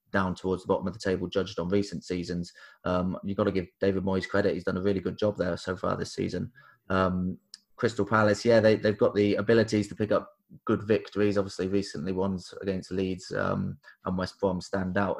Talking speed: 215 wpm